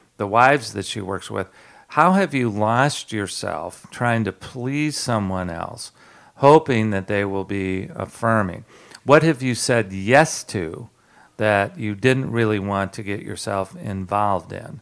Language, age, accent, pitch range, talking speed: English, 50-69, American, 95-120 Hz, 155 wpm